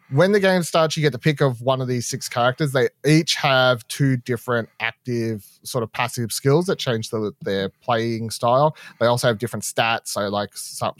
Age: 30-49